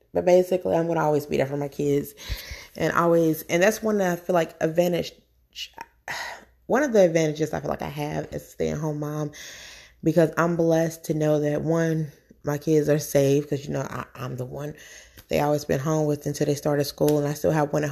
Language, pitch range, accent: English, 150-170 Hz, American